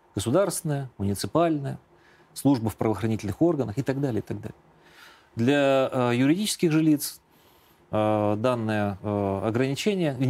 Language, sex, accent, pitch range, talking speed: Russian, male, native, 110-160 Hz, 115 wpm